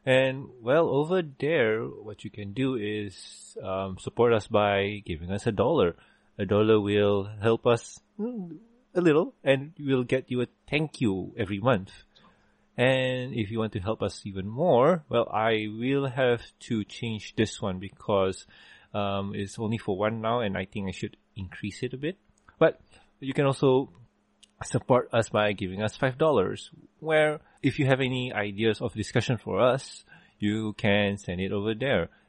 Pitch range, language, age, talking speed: 100-130 Hz, English, 20-39, 170 wpm